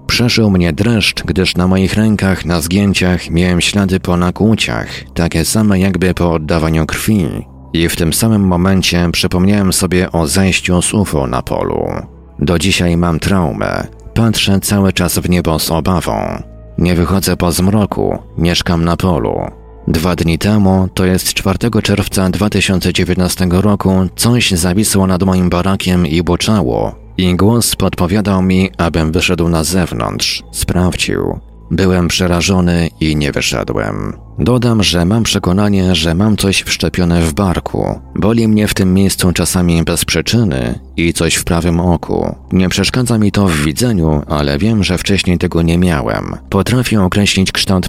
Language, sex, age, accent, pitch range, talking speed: Polish, male, 40-59, native, 85-100 Hz, 150 wpm